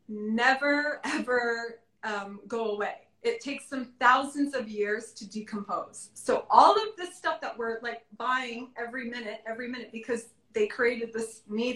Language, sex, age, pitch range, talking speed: English, female, 30-49, 215-265 Hz, 160 wpm